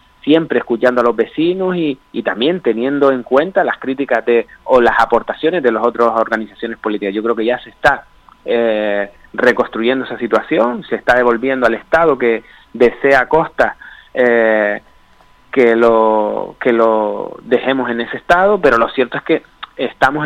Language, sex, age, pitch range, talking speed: Spanish, male, 30-49, 120-145 Hz, 165 wpm